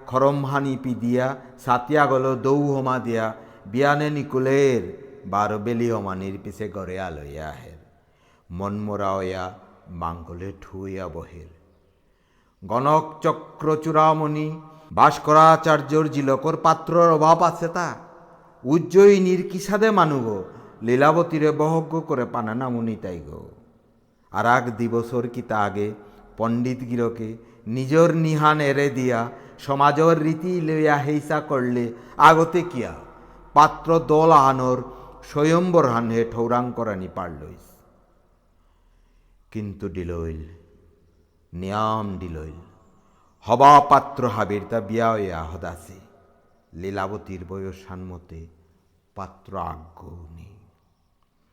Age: 60-79